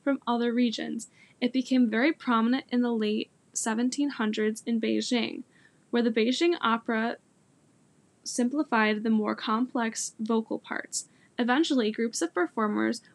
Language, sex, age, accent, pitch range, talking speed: English, female, 10-29, American, 220-260 Hz, 125 wpm